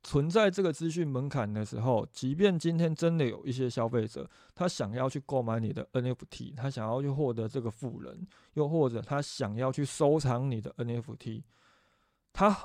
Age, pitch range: 20-39, 120-155 Hz